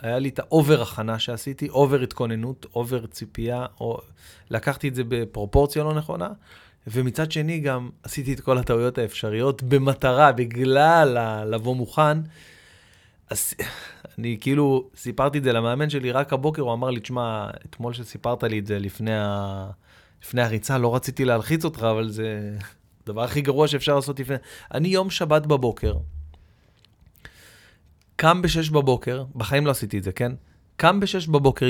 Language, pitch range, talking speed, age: Hebrew, 110-145 Hz, 155 wpm, 30-49